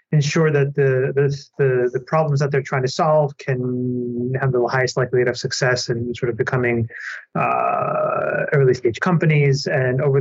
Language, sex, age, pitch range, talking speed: English, male, 30-49, 125-145 Hz, 165 wpm